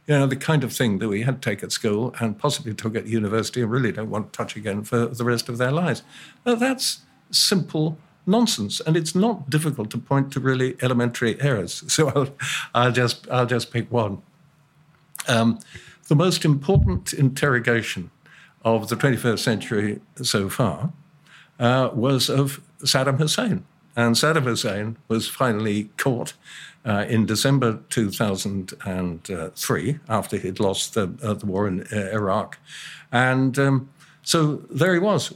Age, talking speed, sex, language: 50-69, 165 wpm, male, English